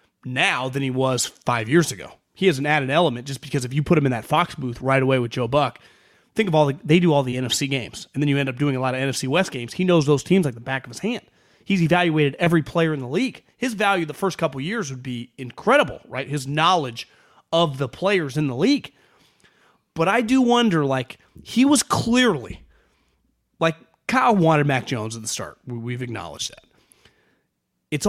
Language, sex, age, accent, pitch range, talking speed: English, male, 30-49, American, 135-195 Hz, 220 wpm